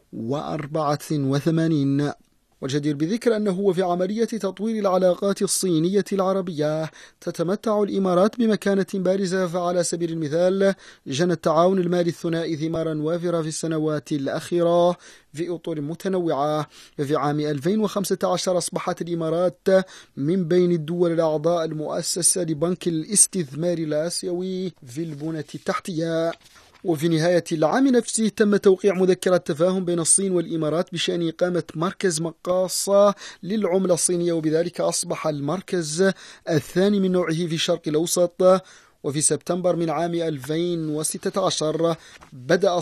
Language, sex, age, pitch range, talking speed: Arabic, male, 30-49, 155-185 Hz, 110 wpm